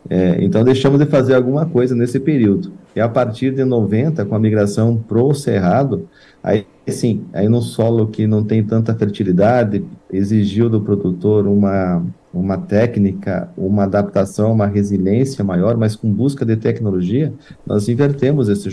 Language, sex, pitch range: Portuguese, male, 100-125 Hz